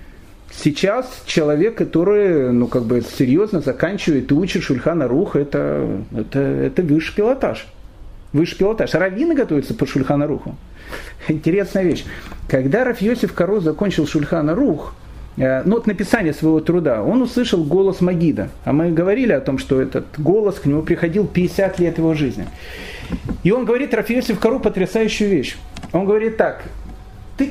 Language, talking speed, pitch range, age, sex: Russian, 145 wpm, 150-215 Hz, 40-59, male